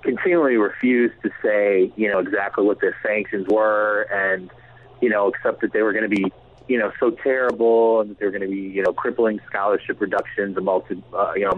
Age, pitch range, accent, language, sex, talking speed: 30-49, 110-135 Hz, American, English, male, 205 wpm